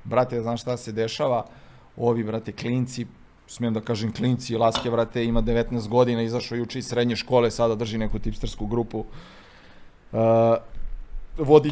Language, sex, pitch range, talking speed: Croatian, male, 110-140 Hz, 150 wpm